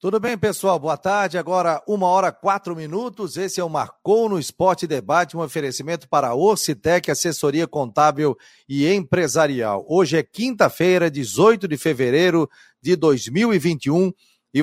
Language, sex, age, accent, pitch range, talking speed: Portuguese, male, 40-59, Brazilian, 145-185 Hz, 145 wpm